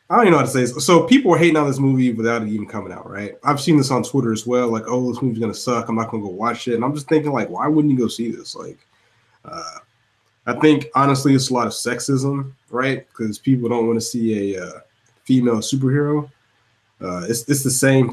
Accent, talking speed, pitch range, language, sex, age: American, 260 wpm, 110-135 Hz, English, male, 20-39